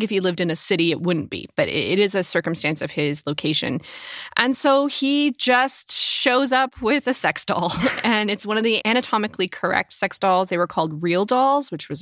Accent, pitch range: American, 160-210 Hz